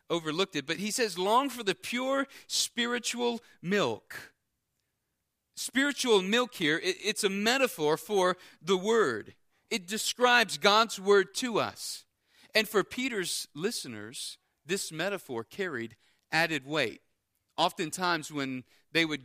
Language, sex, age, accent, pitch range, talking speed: English, male, 40-59, American, 145-205 Hz, 120 wpm